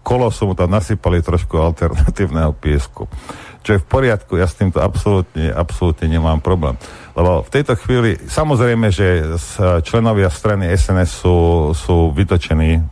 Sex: male